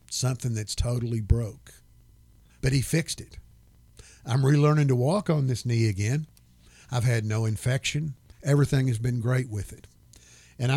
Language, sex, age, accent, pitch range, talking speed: English, male, 50-69, American, 110-145 Hz, 150 wpm